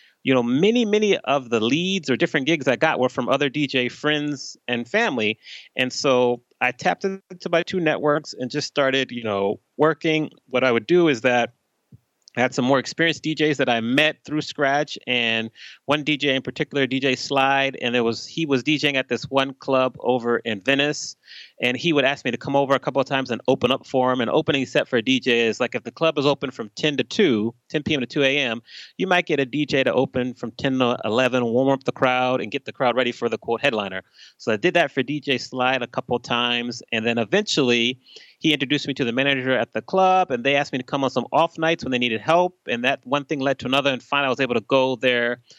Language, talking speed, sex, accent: English, 245 wpm, male, American